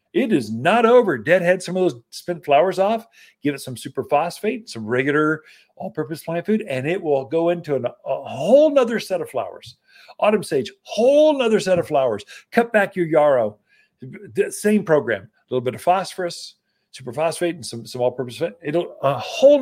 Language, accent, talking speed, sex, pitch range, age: English, American, 195 wpm, male, 130-210 Hz, 50-69